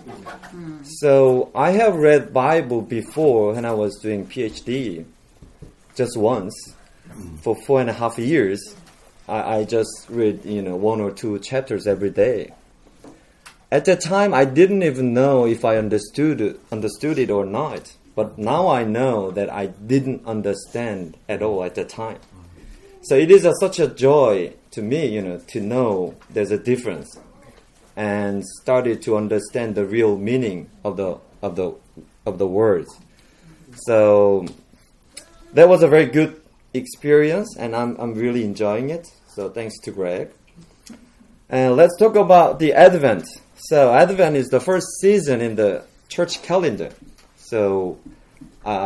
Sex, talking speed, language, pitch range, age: male, 150 wpm, English, 105-155 Hz, 30-49